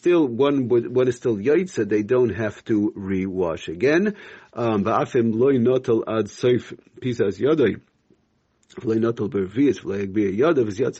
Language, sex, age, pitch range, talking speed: English, male, 50-69, 100-120 Hz, 80 wpm